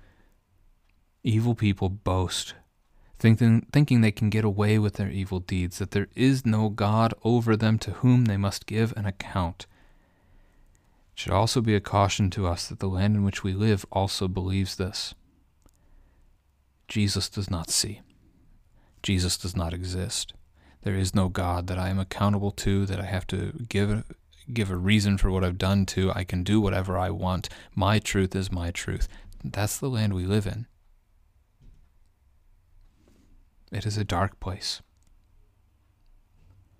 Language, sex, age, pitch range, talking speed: English, male, 30-49, 90-105 Hz, 160 wpm